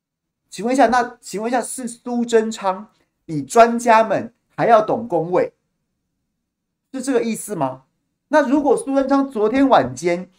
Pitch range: 200-265 Hz